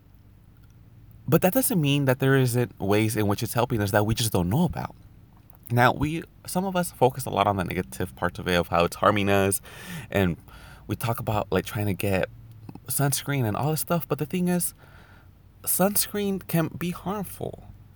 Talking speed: 195 wpm